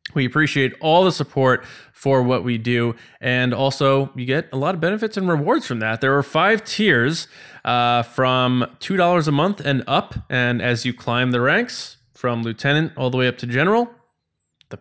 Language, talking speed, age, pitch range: English, 190 wpm, 20-39, 120-155 Hz